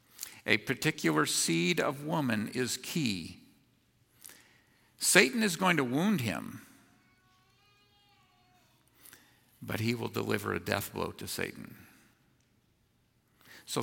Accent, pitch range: American, 120-170 Hz